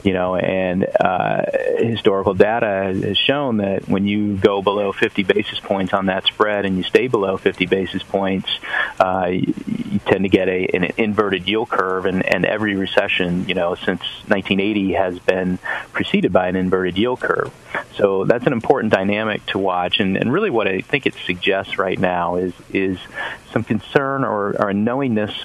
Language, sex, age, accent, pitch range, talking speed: English, male, 40-59, American, 95-105 Hz, 185 wpm